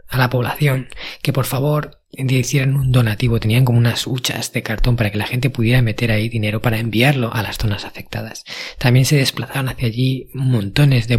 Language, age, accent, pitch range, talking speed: Spanish, 20-39, Spanish, 110-130 Hz, 195 wpm